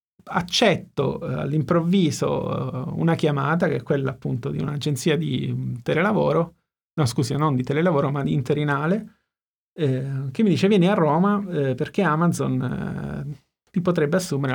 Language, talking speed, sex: Italian, 145 wpm, male